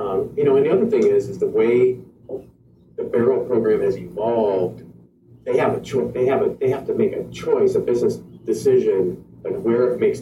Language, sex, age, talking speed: English, male, 40-59, 210 wpm